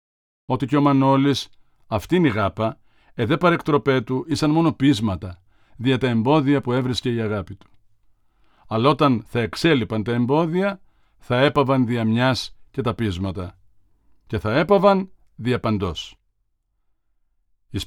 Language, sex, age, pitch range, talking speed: Greek, male, 50-69, 105-145 Hz, 130 wpm